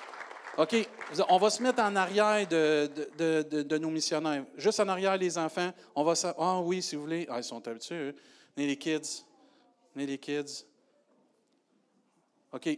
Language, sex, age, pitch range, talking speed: French, male, 40-59, 135-185 Hz, 175 wpm